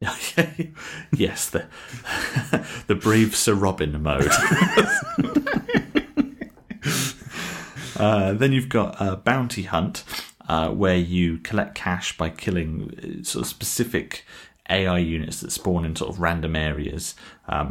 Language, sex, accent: English, male, British